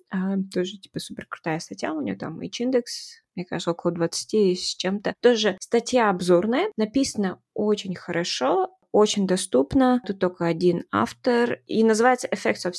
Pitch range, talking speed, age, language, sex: 185-235 Hz, 155 wpm, 20-39, Russian, female